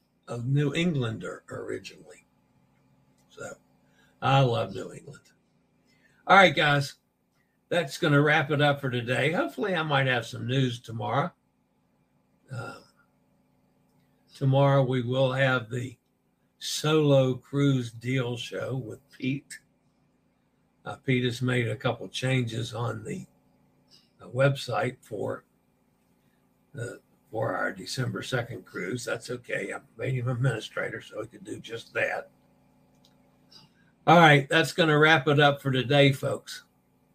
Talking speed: 130 wpm